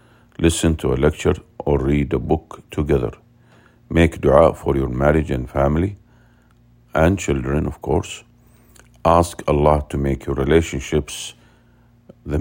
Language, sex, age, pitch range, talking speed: English, male, 50-69, 70-85 Hz, 130 wpm